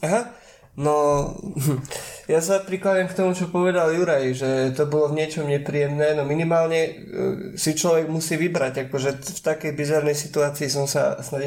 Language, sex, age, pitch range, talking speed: Slovak, male, 20-39, 135-155 Hz, 155 wpm